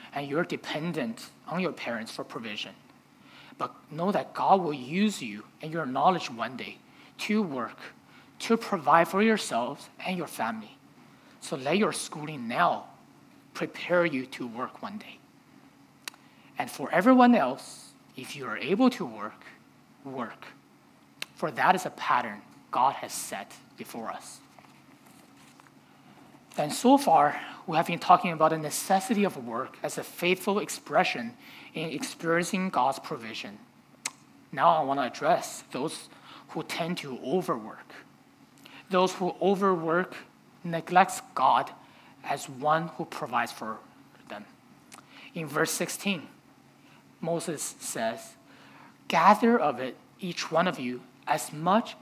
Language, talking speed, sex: English, 135 wpm, male